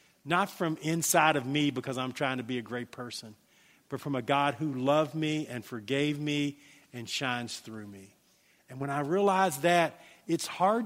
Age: 50-69